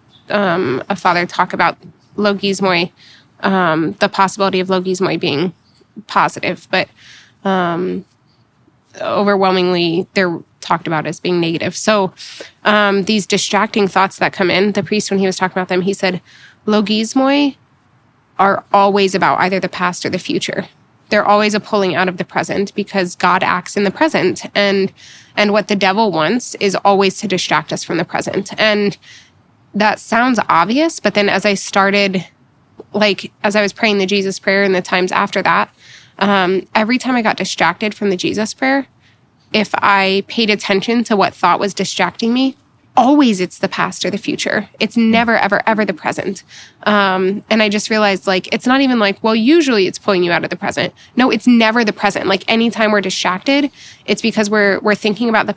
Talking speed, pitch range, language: 180 wpm, 185-210 Hz, English